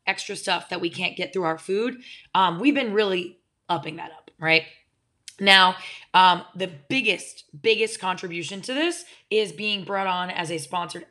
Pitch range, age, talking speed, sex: 170-215 Hz, 20-39, 175 wpm, female